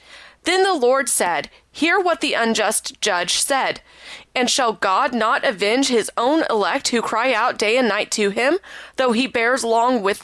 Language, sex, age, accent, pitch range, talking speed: English, female, 30-49, American, 230-310 Hz, 180 wpm